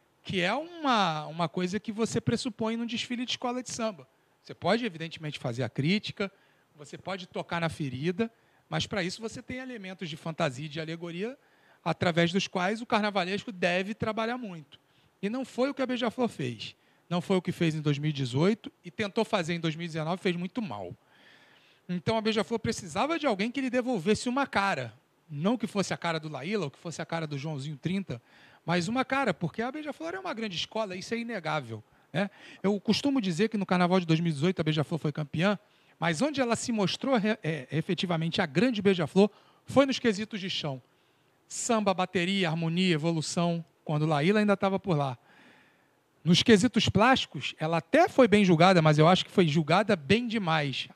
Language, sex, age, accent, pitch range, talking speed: Portuguese, male, 40-59, Brazilian, 160-225 Hz, 185 wpm